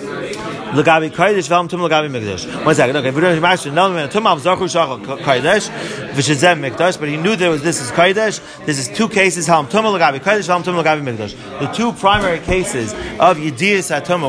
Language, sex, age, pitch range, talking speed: English, male, 30-49, 155-190 Hz, 100 wpm